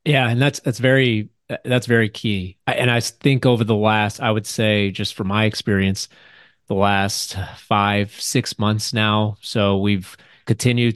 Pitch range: 105-120 Hz